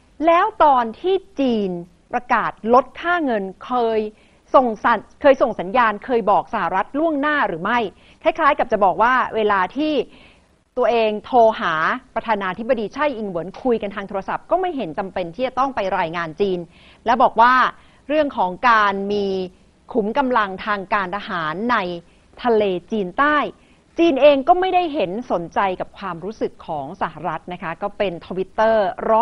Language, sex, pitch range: Thai, female, 190-255 Hz